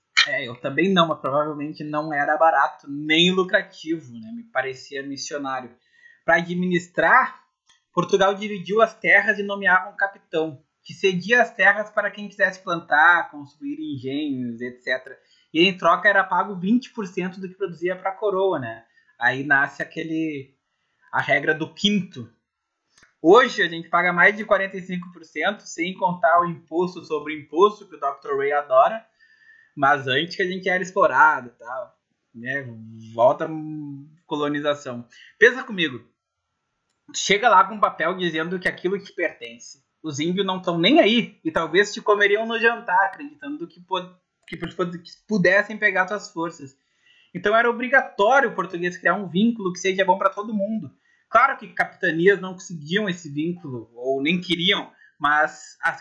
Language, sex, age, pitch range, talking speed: Portuguese, male, 20-39, 155-210 Hz, 160 wpm